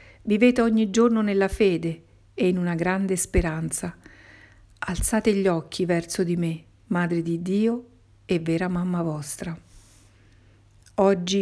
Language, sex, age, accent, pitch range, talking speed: Italian, female, 50-69, native, 160-195 Hz, 125 wpm